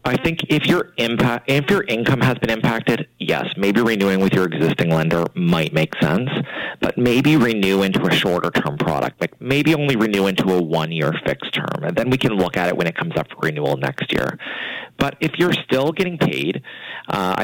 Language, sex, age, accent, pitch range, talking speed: English, male, 30-49, American, 80-110 Hz, 205 wpm